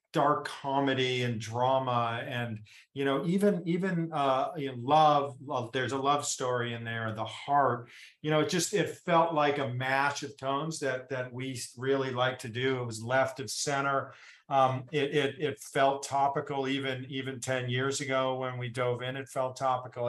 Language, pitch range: English, 125-145 Hz